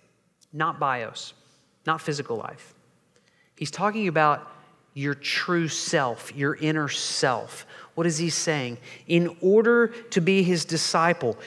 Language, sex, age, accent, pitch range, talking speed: English, male, 40-59, American, 150-195 Hz, 125 wpm